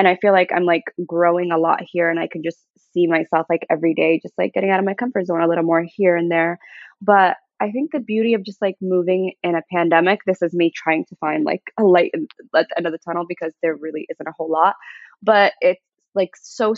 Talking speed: 255 wpm